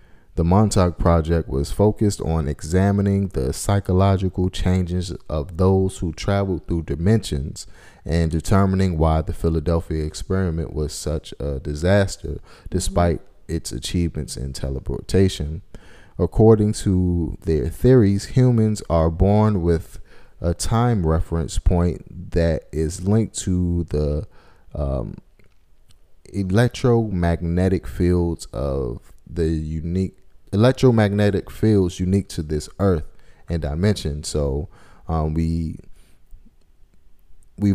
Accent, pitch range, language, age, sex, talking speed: American, 80-95 Hz, English, 30-49, male, 105 wpm